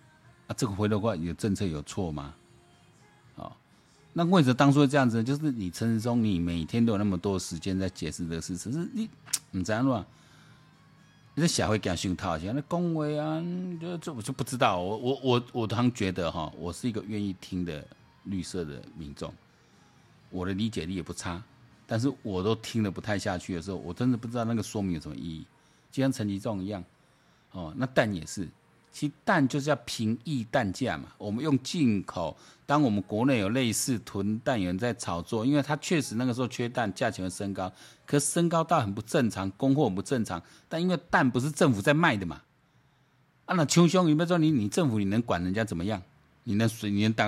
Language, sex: Chinese, male